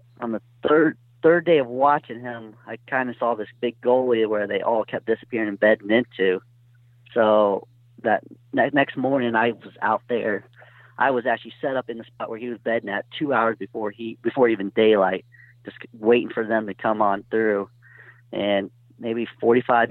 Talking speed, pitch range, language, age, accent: 185 wpm, 105-120 Hz, English, 40-59, American